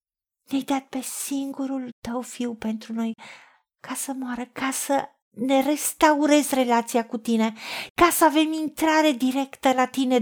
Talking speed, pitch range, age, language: 145 wpm, 235-305 Hz, 50-69, Romanian